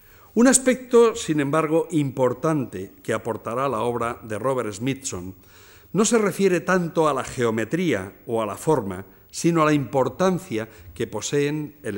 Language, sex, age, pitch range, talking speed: Spanish, male, 60-79, 105-155 Hz, 150 wpm